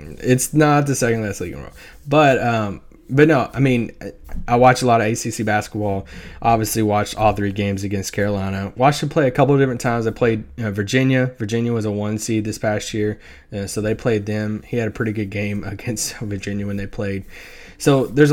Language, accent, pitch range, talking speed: English, American, 105-130 Hz, 220 wpm